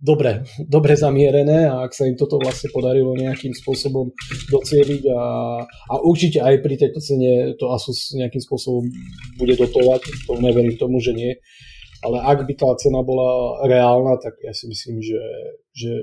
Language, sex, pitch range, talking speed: Slovak, male, 120-140 Hz, 165 wpm